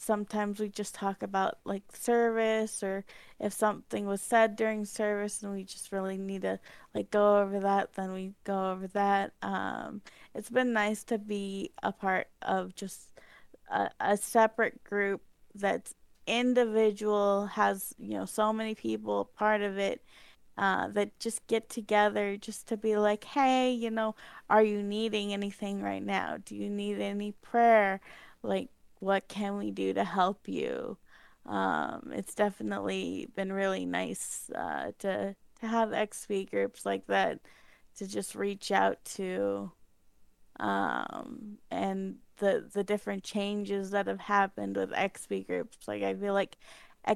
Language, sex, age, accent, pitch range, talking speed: English, female, 20-39, American, 190-215 Hz, 155 wpm